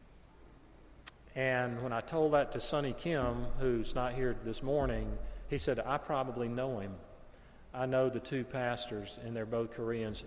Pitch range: 115-150 Hz